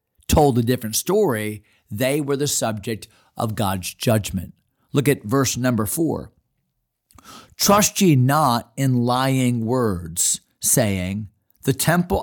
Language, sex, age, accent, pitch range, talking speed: English, male, 40-59, American, 120-170 Hz, 125 wpm